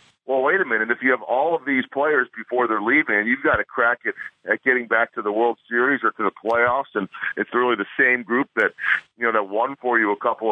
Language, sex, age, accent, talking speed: English, male, 50-69, American, 260 wpm